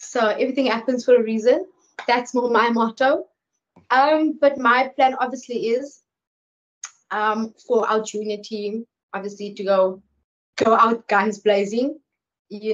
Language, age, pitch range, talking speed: English, 20-39, 210-260 Hz, 135 wpm